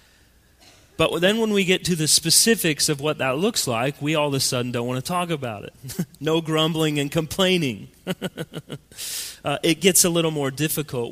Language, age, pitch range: English, 30-49, 110-145 Hz